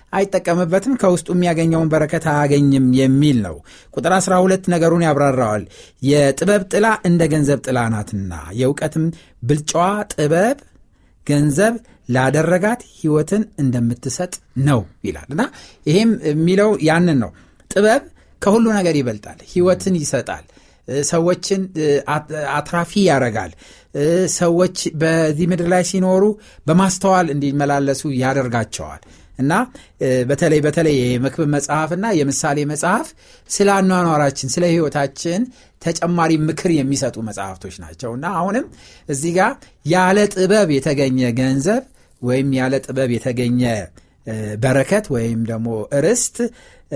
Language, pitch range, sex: Amharic, 125-180 Hz, male